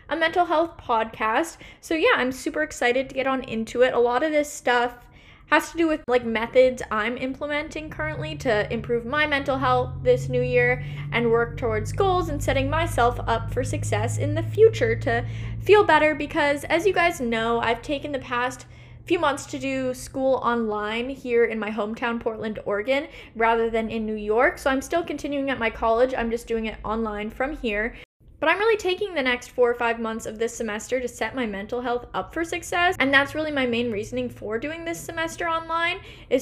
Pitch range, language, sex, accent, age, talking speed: 215-290 Hz, English, female, American, 10-29, 205 wpm